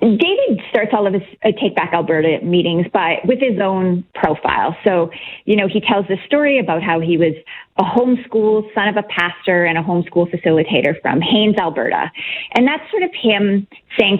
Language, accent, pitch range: English, American, 175-225 Hz